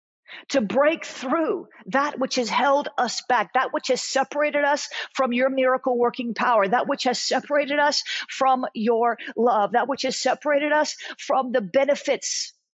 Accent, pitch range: American, 235-275 Hz